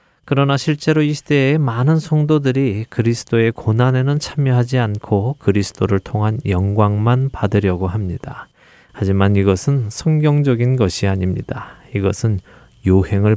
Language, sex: Korean, male